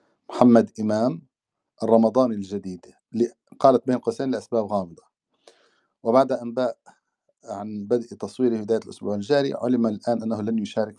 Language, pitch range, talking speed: Arabic, 100-115 Hz, 120 wpm